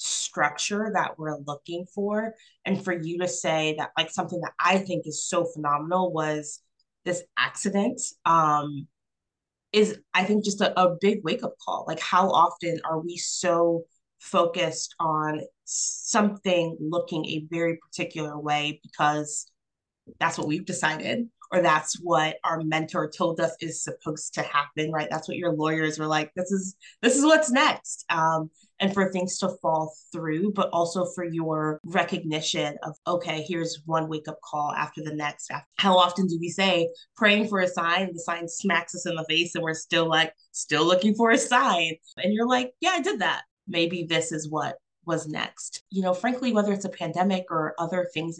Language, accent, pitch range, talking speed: English, American, 160-185 Hz, 180 wpm